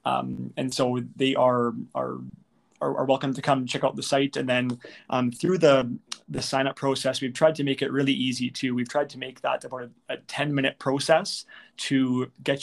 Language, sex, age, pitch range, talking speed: English, male, 30-49, 125-140 Hz, 200 wpm